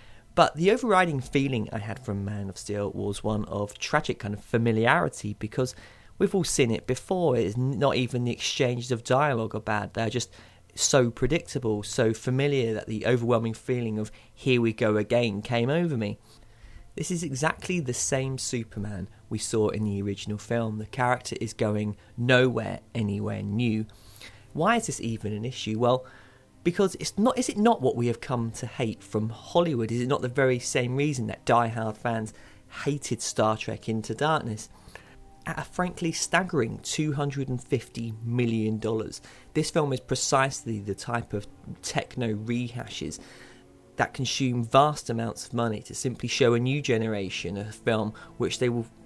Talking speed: 170 wpm